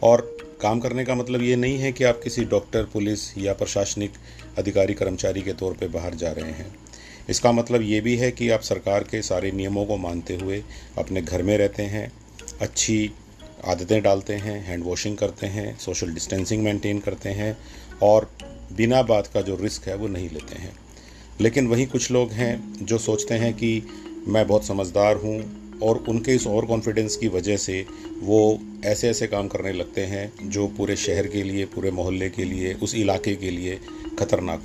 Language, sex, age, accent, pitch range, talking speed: Hindi, male, 40-59, native, 95-115 Hz, 190 wpm